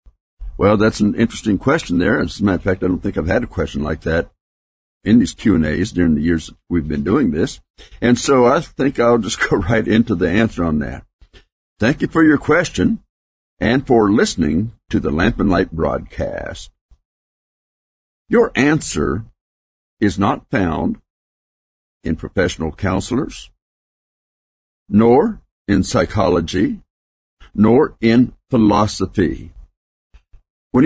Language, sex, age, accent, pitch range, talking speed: English, male, 60-79, American, 75-115 Hz, 140 wpm